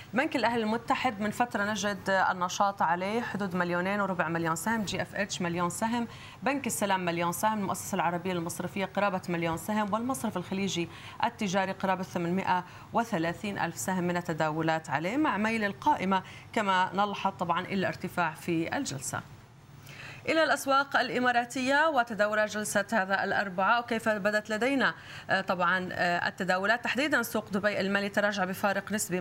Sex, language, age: female, Arabic, 30-49